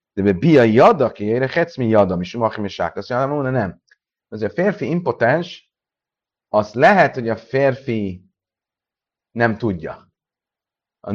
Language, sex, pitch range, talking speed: Hungarian, male, 100-135 Hz, 120 wpm